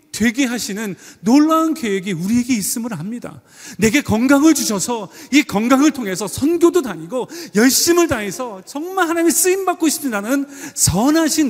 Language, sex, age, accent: Korean, male, 30-49, native